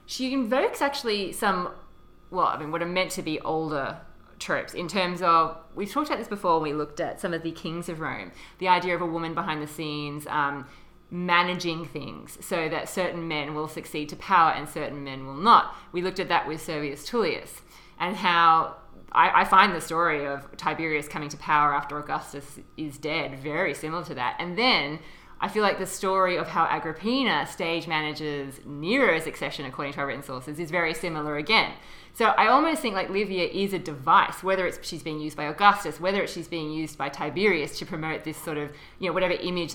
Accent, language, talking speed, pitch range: Australian, English, 205 wpm, 150-180 Hz